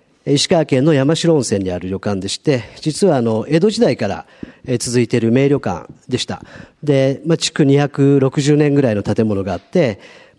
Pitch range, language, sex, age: 120-165 Hz, Japanese, male, 50-69